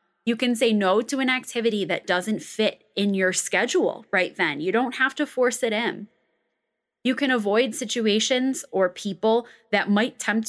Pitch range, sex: 210-255 Hz, female